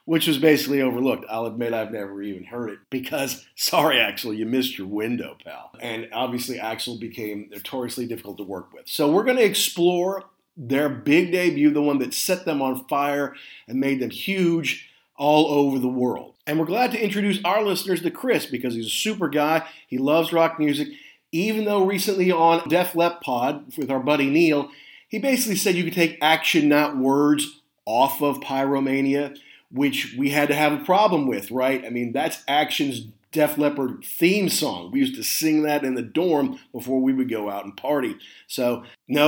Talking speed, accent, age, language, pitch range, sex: 190 wpm, American, 50-69, English, 125-170 Hz, male